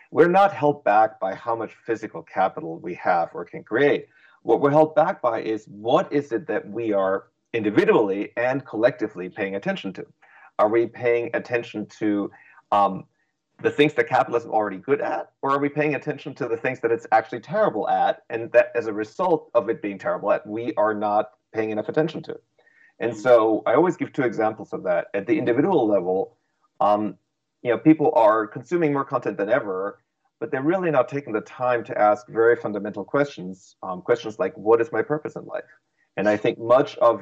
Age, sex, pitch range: 40-59, male, 110-155 Hz